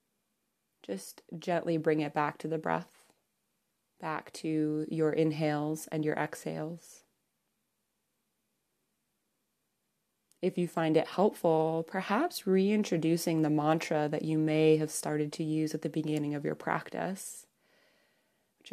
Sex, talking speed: female, 120 wpm